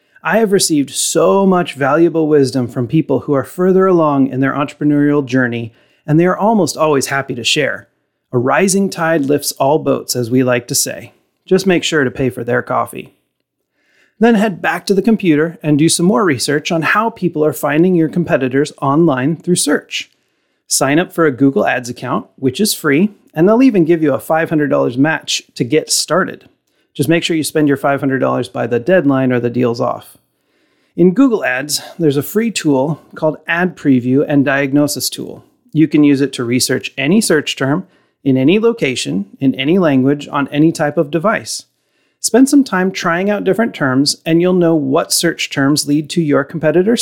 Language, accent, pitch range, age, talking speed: English, American, 135-175 Hz, 30-49, 190 wpm